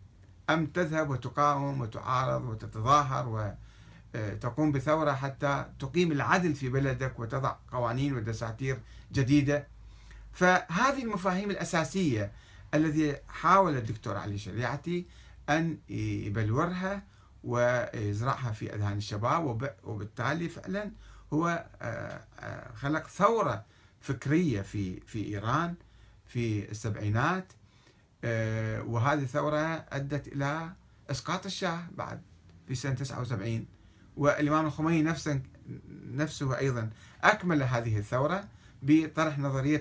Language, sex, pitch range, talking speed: Arabic, male, 110-150 Hz, 90 wpm